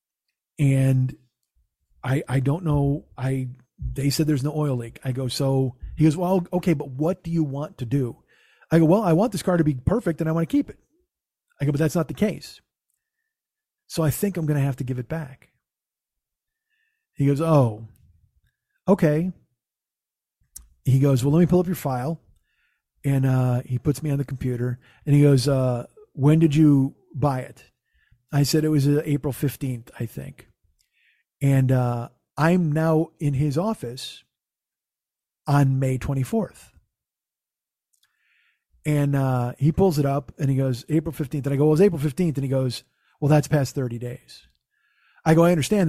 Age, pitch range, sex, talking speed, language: 40-59, 130-160 Hz, male, 180 wpm, English